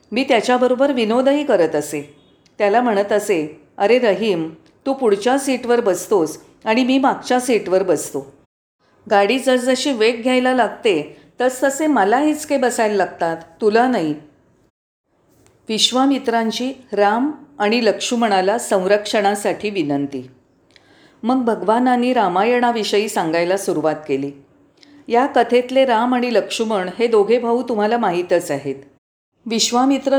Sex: female